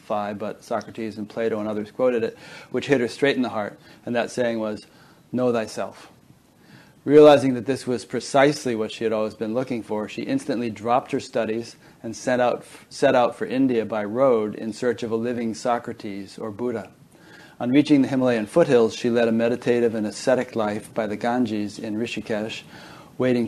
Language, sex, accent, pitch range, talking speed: English, male, American, 110-130 Hz, 185 wpm